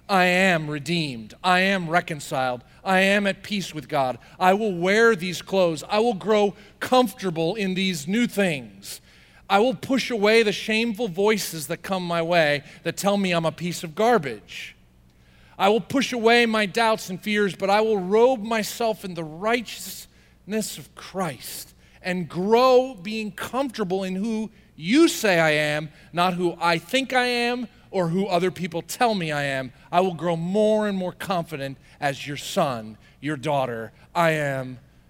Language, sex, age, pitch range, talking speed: English, male, 40-59, 140-205 Hz, 170 wpm